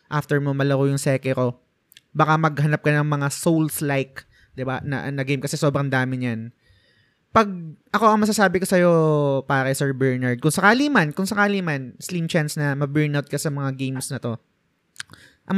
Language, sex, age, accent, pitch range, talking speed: Filipino, male, 20-39, native, 140-185 Hz, 185 wpm